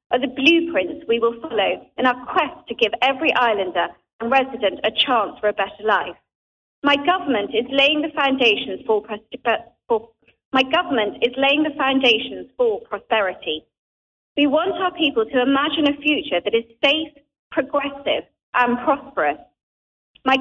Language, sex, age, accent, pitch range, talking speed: English, female, 40-59, British, 235-310 Hz, 155 wpm